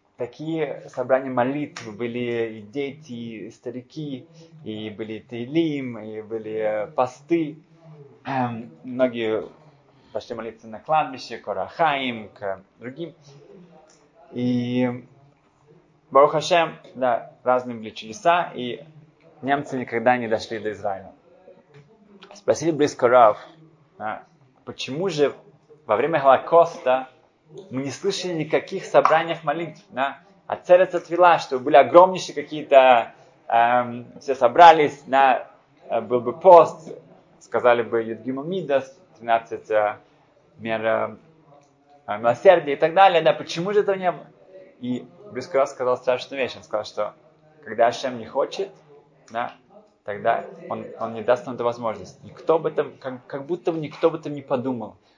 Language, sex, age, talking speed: Russian, male, 20-39, 125 wpm